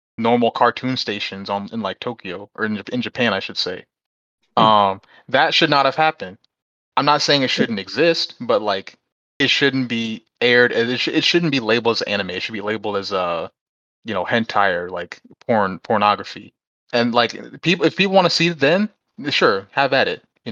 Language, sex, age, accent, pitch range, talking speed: English, male, 20-39, American, 105-150 Hz, 200 wpm